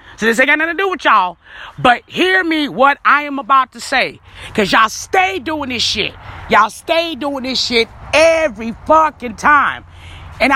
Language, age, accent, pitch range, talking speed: English, 30-49, American, 225-295 Hz, 190 wpm